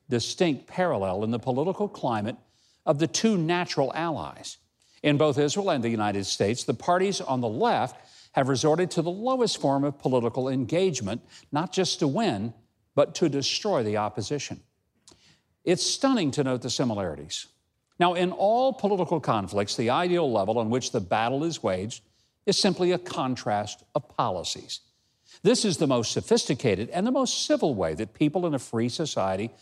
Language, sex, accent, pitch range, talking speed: English, male, American, 115-180 Hz, 170 wpm